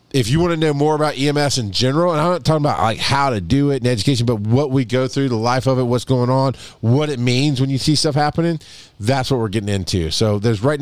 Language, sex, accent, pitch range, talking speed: English, male, American, 115-145 Hz, 275 wpm